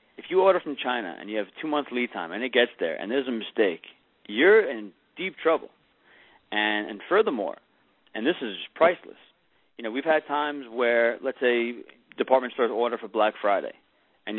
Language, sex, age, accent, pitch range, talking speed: English, male, 40-59, American, 105-150 Hz, 190 wpm